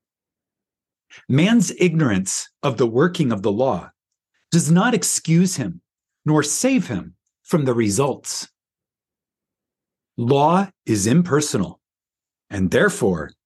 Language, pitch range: English, 135-185 Hz